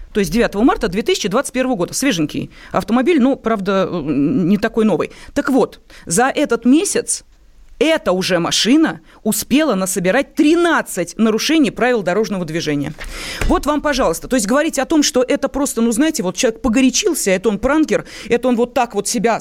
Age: 30-49